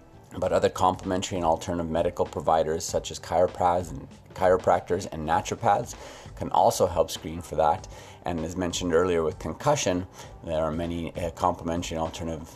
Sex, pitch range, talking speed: male, 80-100 Hz, 155 wpm